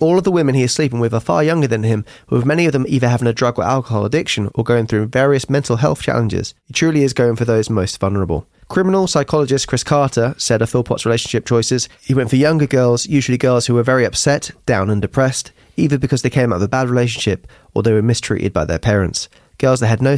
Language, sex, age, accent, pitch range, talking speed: English, male, 20-39, British, 110-135 Hz, 245 wpm